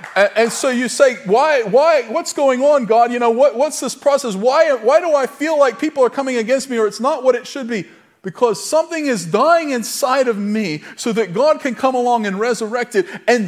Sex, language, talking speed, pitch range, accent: male, English, 225 wpm, 200-285 Hz, American